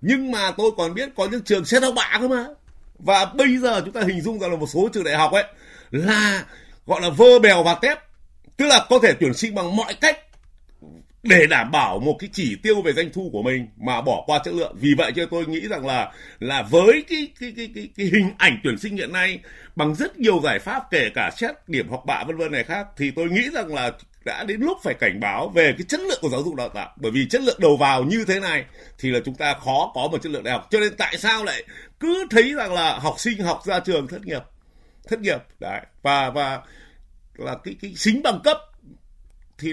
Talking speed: 250 wpm